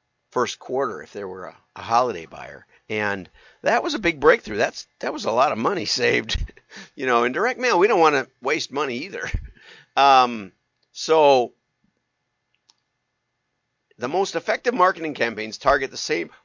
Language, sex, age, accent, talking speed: English, male, 50-69, American, 160 wpm